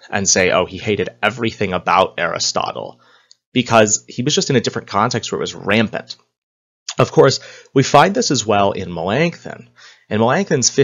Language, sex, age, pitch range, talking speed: English, male, 30-49, 95-120 Hz, 170 wpm